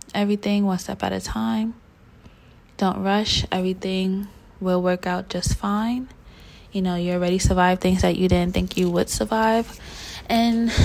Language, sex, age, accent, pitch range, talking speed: English, female, 20-39, American, 175-195 Hz, 155 wpm